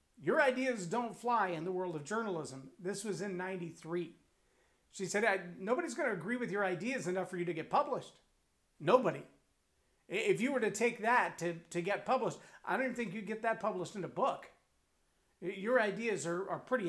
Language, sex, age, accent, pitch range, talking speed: English, male, 40-59, American, 185-250 Hz, 190 wpm